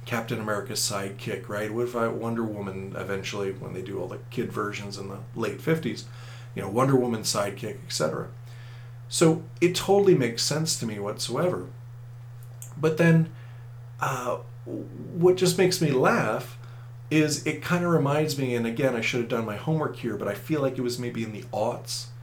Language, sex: English, male